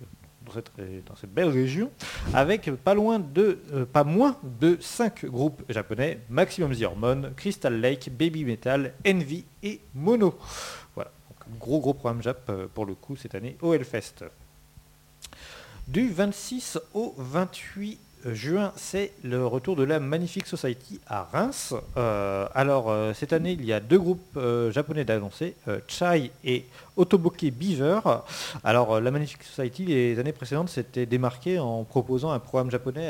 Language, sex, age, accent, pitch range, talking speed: French, male, 50-69, French, 110-155 Hz, 145 wpm